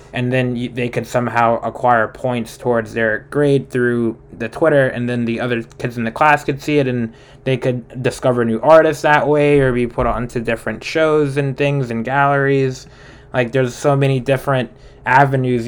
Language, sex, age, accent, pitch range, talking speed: English, male, 20-39, American, 115-135 Hz, 190 wpm